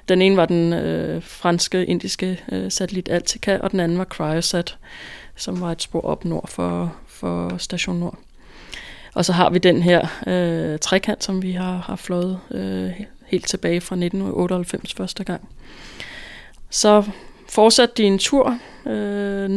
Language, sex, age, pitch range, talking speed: Danish, female, 20-39, 175-220 Hz, 155 wpm